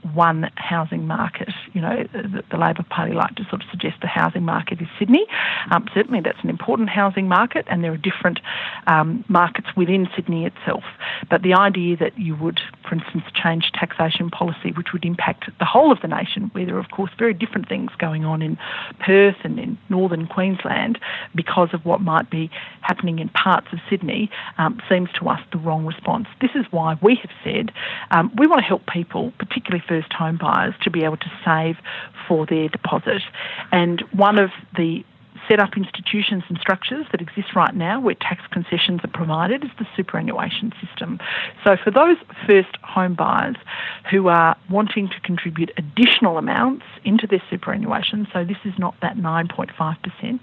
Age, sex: 40-59, female